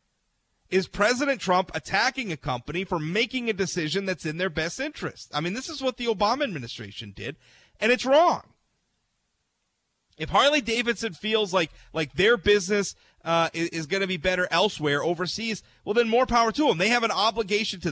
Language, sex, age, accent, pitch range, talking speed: English, male, 30-49, American, 150-215 Hz, 180 wpm